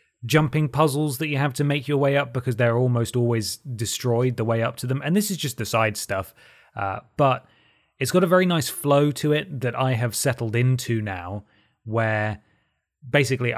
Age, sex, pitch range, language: 20-39, male, 115-145 Hz, English